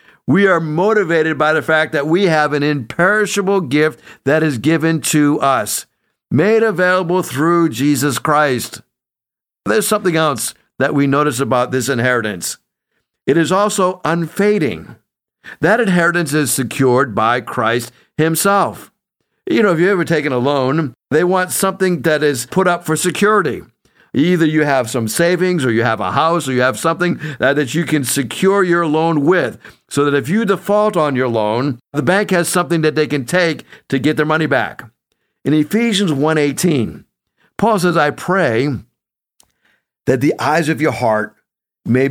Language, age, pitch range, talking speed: English, 50-69, 135-175 Hz, 165 wpm